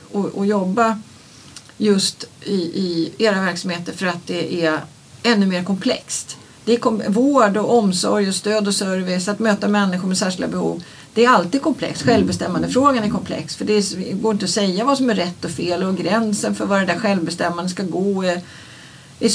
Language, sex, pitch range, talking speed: Swedish, female, 170-215 Hz, 200 wpm